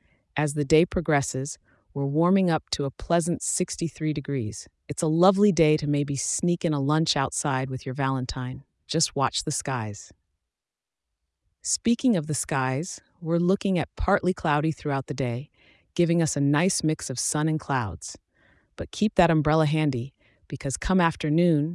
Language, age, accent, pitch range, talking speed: English, 40-59, American, 135-170 Hz, 165 wpm